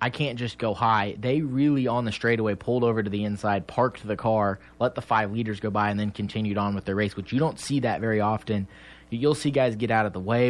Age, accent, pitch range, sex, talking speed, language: 20-39, American, 100-120 Hz, male, 265 wpm, English